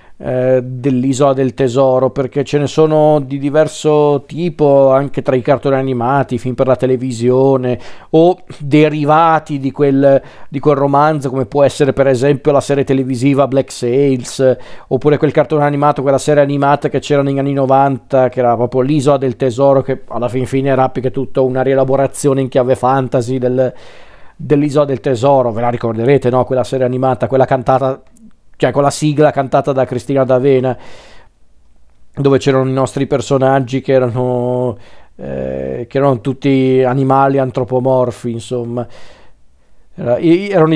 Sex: male